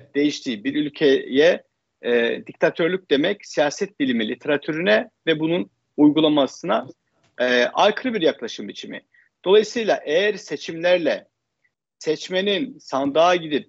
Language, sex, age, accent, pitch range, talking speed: Turkish, male, 50-69, native, 140-200 Hz, 100 wpm